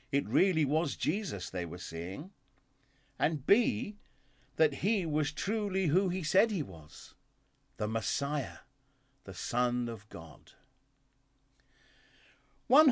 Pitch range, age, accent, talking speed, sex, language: 125-190 Hz, 50-69, British, 115 wpm, male, English